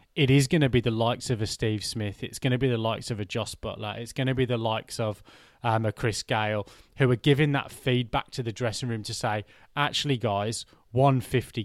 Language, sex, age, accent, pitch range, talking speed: English, male, 20-39, British, 110-130 Hz, 235 wpm